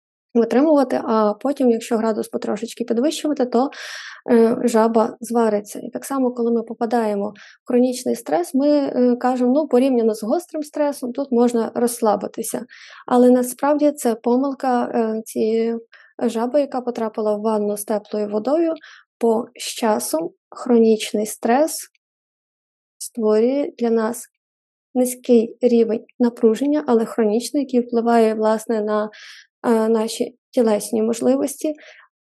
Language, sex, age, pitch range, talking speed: Ukrainian, female, 20-39, 225-260 Hz, 120 wpm